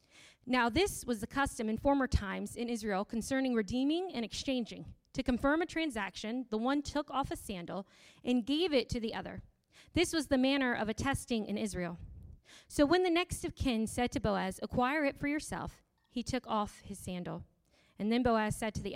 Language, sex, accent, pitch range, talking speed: English, female, American, 200-270 Hz, 195 wpm